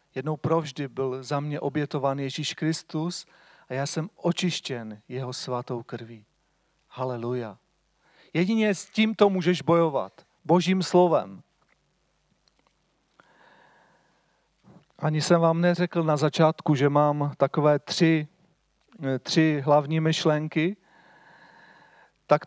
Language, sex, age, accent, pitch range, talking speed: Czech, male, 40-59, native, 145-180 Hz, 100 wpm